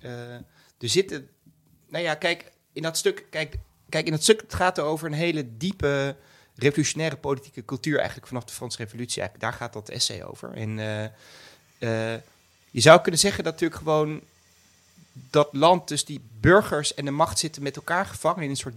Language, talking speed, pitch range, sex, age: Dutch, 190 wpm, 115-155 Hz, male, 30-49